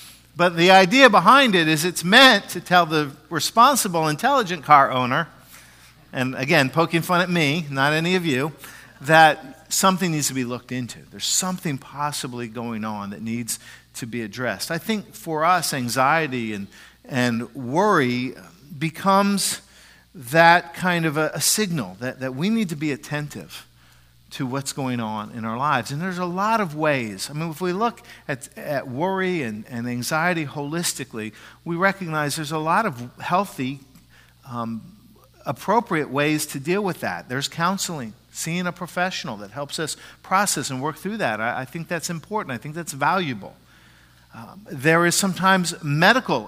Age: 50-69